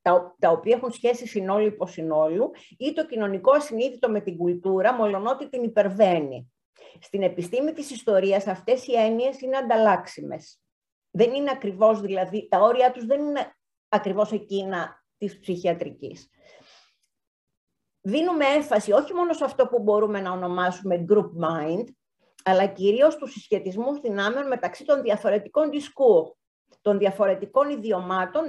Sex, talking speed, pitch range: female, 135 wpm, 185-255 Hz